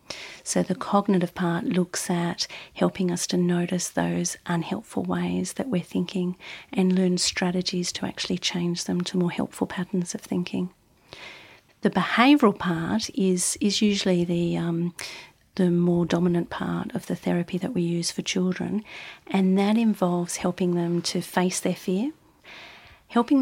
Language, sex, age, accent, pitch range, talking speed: English, female, 40-59, Australian, 170-190 Hz, 150 wpm